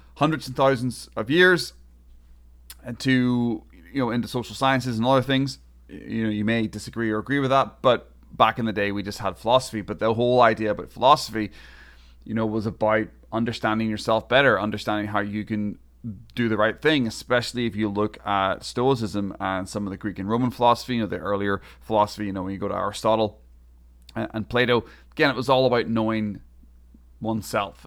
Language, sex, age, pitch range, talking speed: English, male, 30-49, 100-120 Hz, 190 wpm